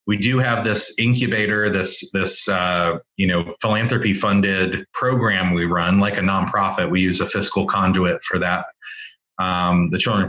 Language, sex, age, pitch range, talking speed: English, male, 30-49, 95-115 Hz, 170 wpm